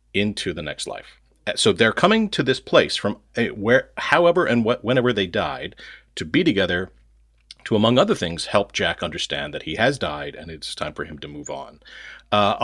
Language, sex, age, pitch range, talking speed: English, male, 40-59, 90-125 Hz, 200 wpm